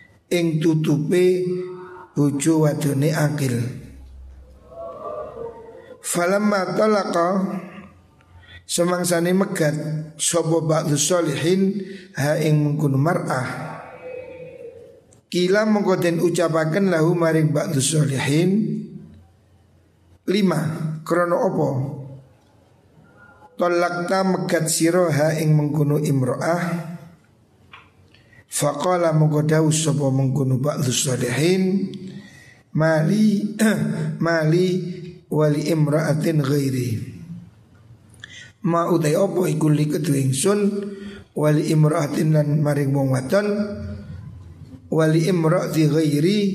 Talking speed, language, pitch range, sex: 50 wpm, Indonesian, 135-180 Hz, male